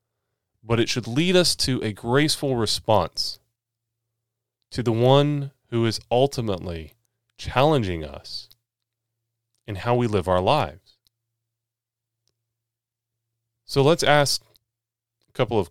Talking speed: 110 wpm